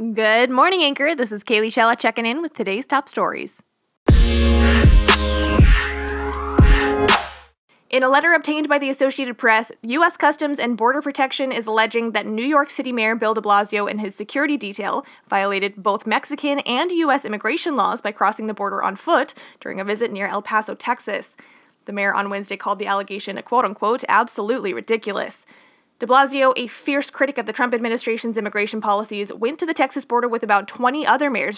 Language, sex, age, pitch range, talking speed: English, female, 20-39, 200-255 Hz, 175 wpm